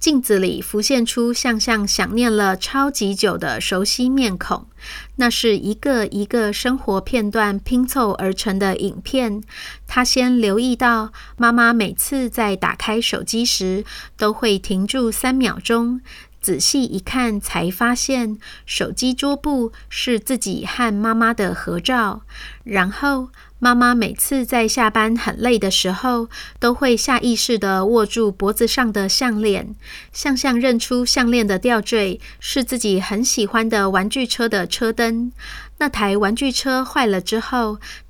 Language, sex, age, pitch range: Chinese, female, 30-49, 205-250 Hz